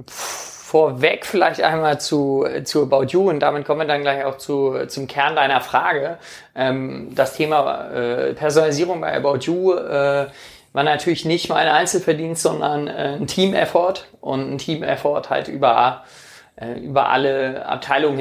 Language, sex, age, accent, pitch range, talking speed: German, male, 30-49, German, 130-155 Hz, 140 wpm